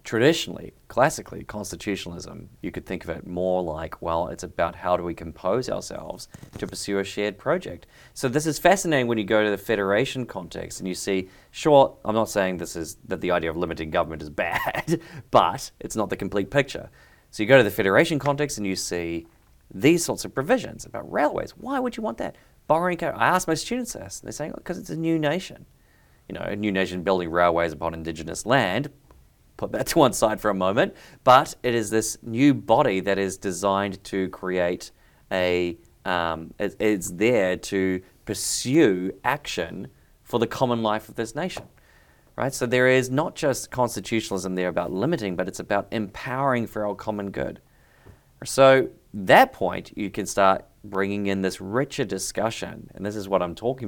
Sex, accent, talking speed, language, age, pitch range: male, Australian, 190 wpm, English, 30-49, 90-125 Hz